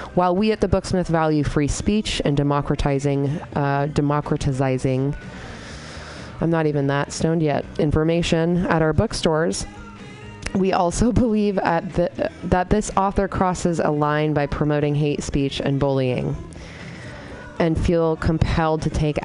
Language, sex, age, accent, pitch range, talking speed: English, female, 20-39, American, 140-170 Hz, 135 wpm